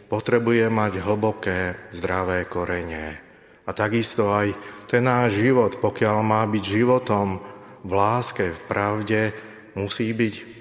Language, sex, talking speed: Slovak, male, 120 wpm